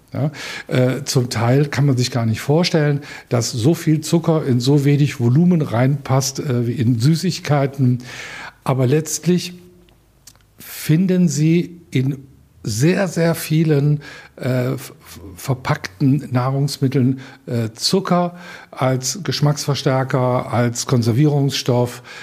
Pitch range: 120-150 Hz